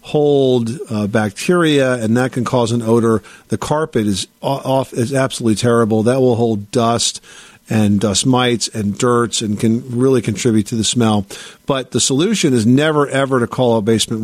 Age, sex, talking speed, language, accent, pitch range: 50-69, male, 175 wpm, English, American, 110-130 Hz